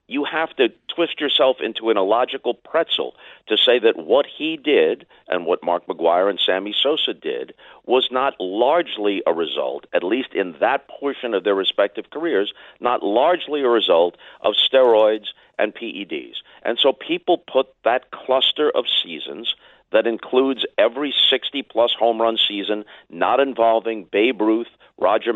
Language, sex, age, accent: English, male, 50-69, American